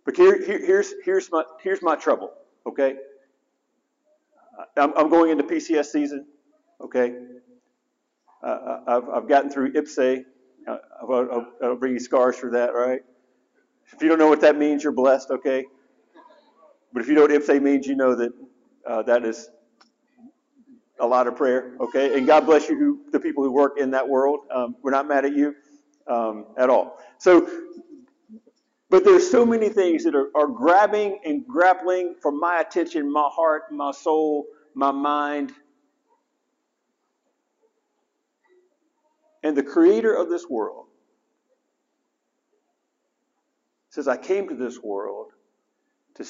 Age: 50-69